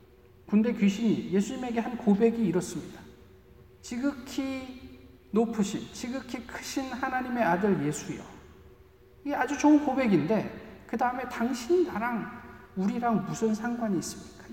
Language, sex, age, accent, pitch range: Korean, male, 40-59, native, 190-275 Hz